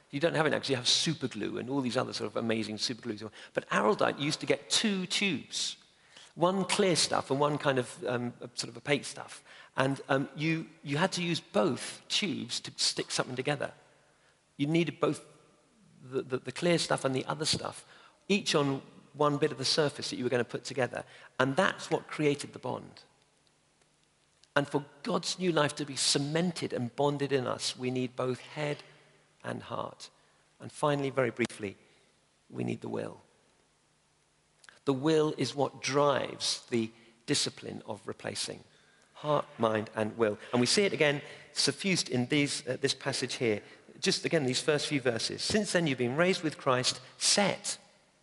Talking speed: 185 wpm